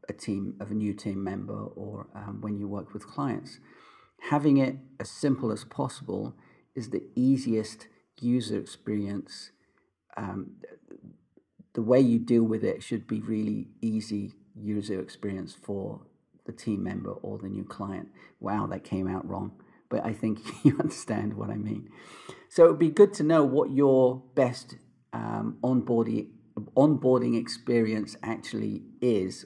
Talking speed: 150 wpm